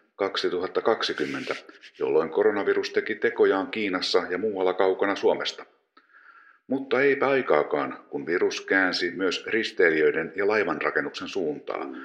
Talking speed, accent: 105 wpm, native